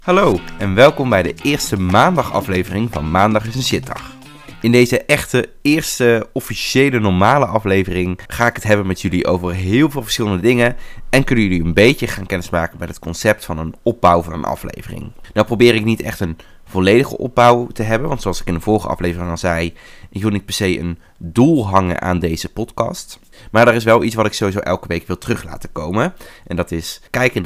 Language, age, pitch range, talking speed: Dutch, 20-39, 90-115 Hz, 210 wpm